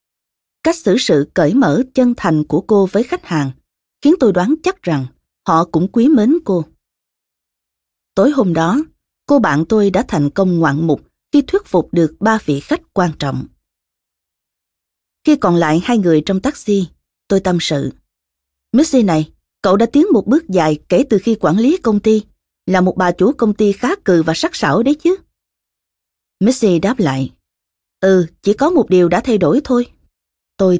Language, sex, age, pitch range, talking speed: Vietnamese, female, 20-39, 155-240 Hz, 180 wpm